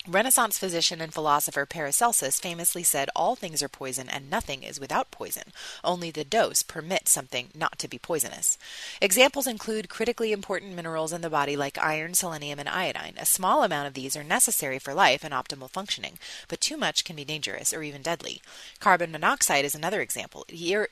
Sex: female